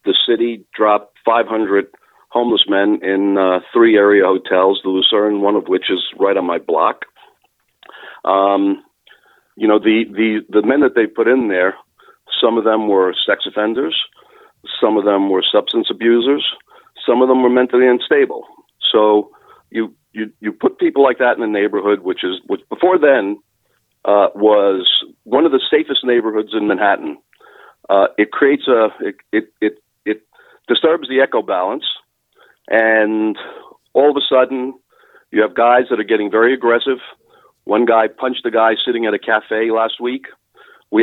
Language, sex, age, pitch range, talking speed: English, male, 50-69, 105-140 Hz, 165 wpm